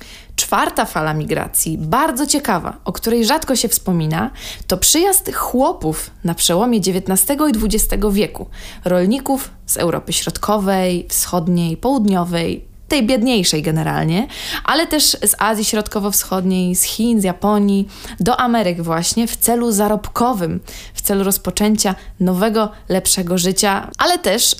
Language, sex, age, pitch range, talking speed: Polish, female, 20-39, 180-215 Hz, 125 wpm